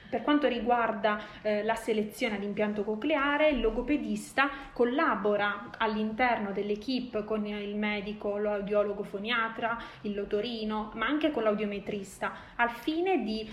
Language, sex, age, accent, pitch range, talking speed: Italian, female, 20-39, native, 210-255 Hz, 120 wpm